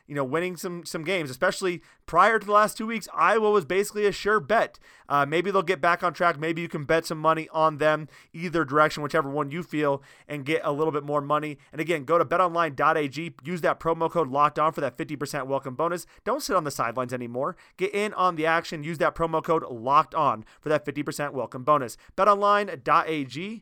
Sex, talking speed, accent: male, 220 wpm, American